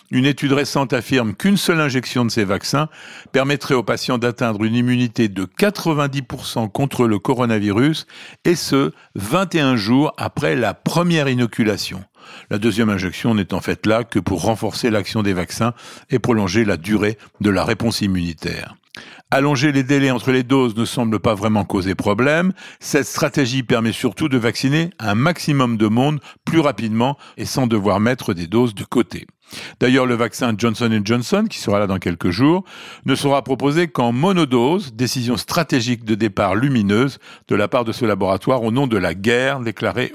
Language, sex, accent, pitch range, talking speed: French, male, French, 110-140 Hz, 170 wpm